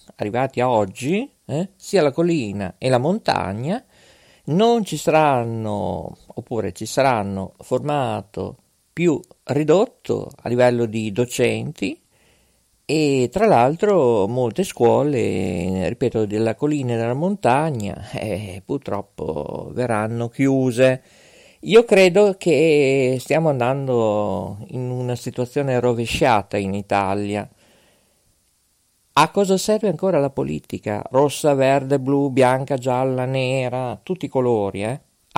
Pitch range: 110-145 Hz